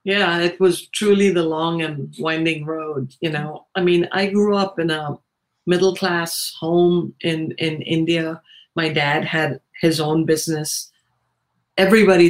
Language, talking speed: English, 150 wpm